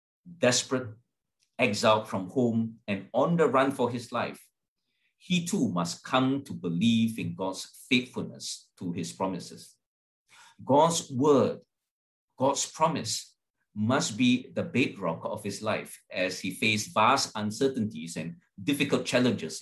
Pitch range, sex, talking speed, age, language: 100-135 Hz, male, 130 wpm, 50-69, English